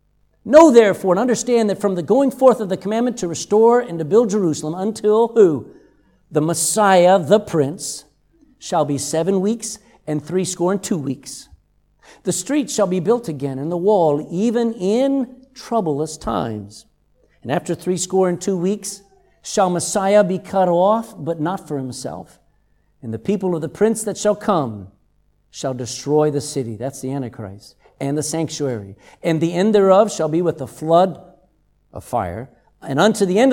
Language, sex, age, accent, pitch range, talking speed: English, male, 50-69, American, 150-220 Hz, 170 wpm